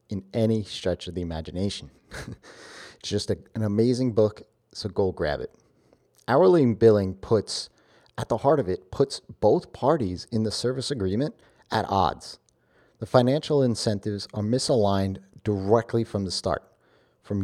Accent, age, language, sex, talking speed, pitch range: American, 40-59, English, male, 145 wpm, 95-115 Hz